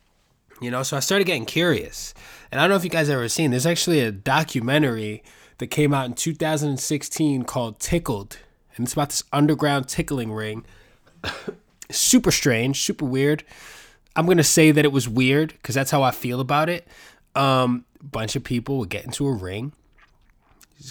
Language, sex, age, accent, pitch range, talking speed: English, male, 20-39, American, 110-150 Hz, 180 wpm